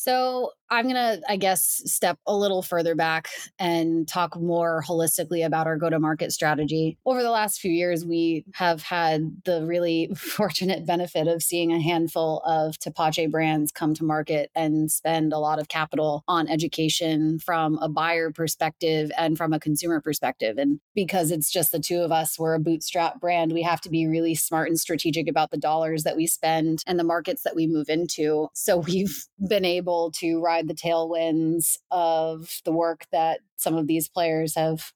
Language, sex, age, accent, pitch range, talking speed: English, female, 20-39, American, 160-175 Hz, 190 wpm